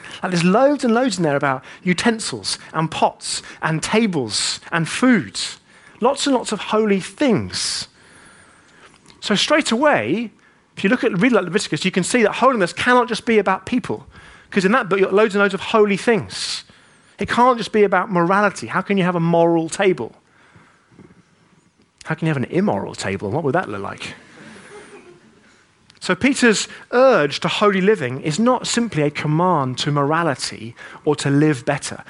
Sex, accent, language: male, British, English